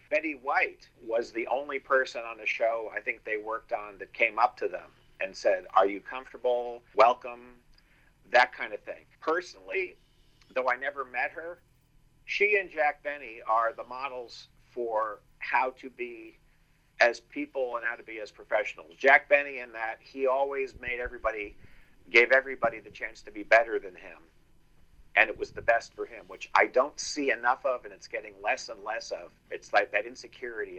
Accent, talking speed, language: American, 185 wpm, English